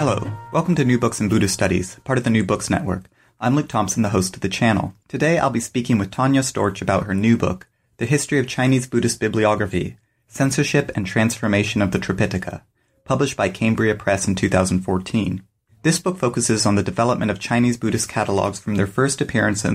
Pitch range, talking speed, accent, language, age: 105-125 Hz, 200 wpm, American, English, 30-49